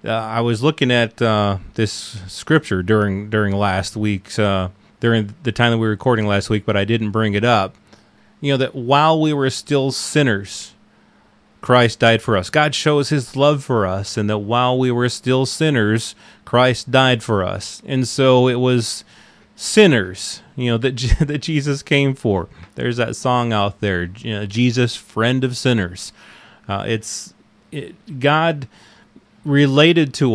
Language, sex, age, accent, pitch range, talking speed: English, male, 30-49, American, 105-130 Hz, 160 wpm